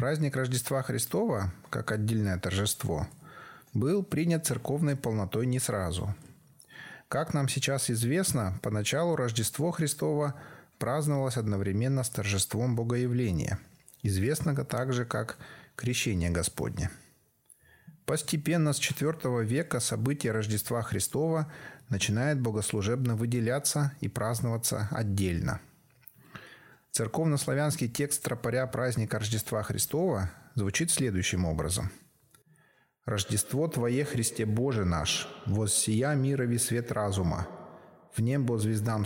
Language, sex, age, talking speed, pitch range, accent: Russian, male, 30-49, 95 wpm, 105-140 Hz, native